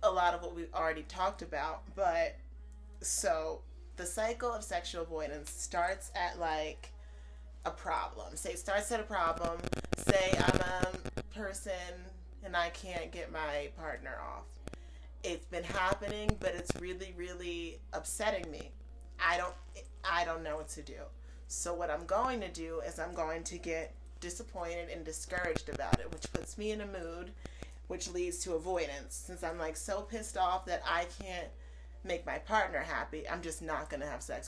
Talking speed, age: 175 wpm, 30-49